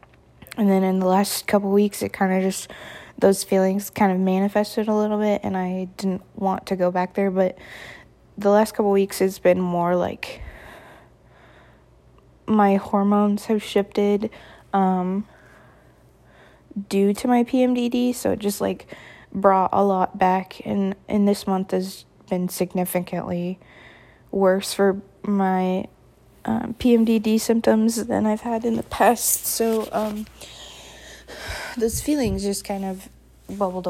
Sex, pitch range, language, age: female, 180-210 Hz, English, 20-39